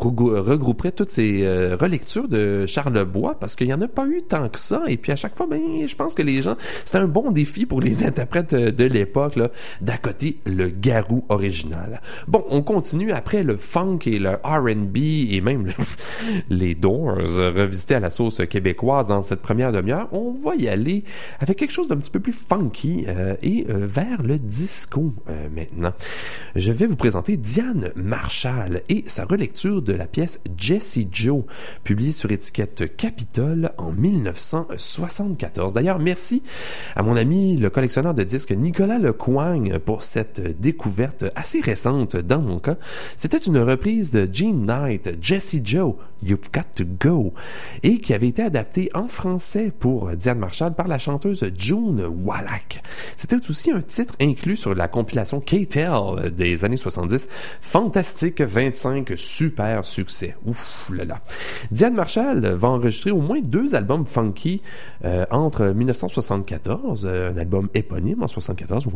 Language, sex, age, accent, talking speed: English, male, 30-49, Canadian, 165 wpm